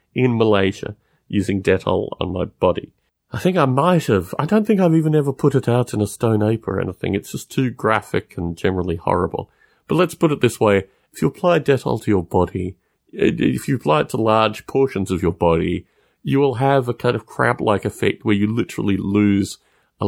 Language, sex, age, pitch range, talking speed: English, male, 40-59, 95-135 Hz, 210 wpm